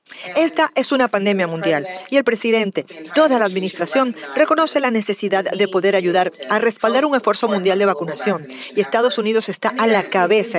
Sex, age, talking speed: female, 40-59, 175 wpm